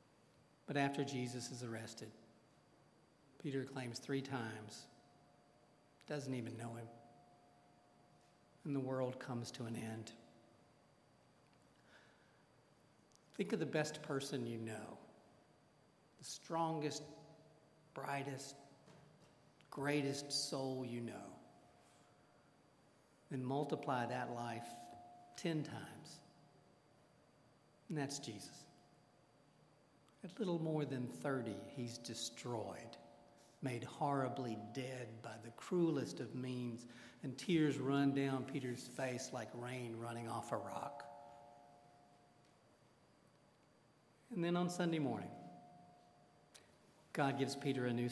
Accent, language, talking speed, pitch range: American, English, 100 wpm, 120-150 Hz